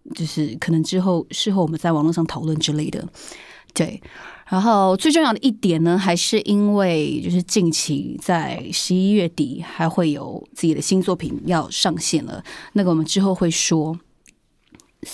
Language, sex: Chinese, female